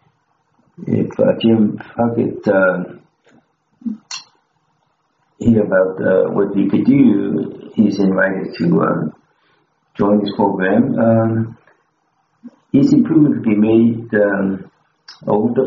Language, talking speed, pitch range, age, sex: English, 105 wpm, 95-115 Hz, 60-79, male